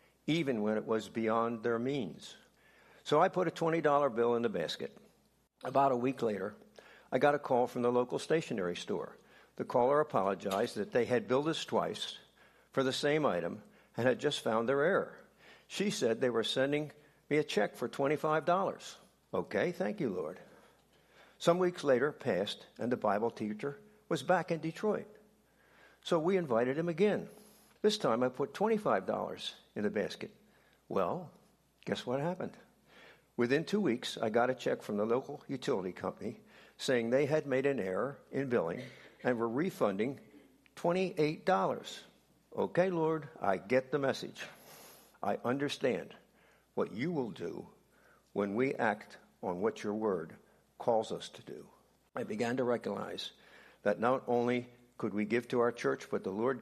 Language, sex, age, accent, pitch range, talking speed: English, male, 60-79, American, 120-165 Hz, 165 wpm